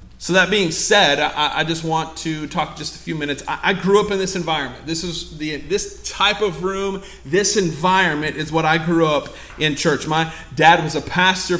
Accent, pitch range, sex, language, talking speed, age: American, 160-200 Hz, male, English, 205 wpm, 30-49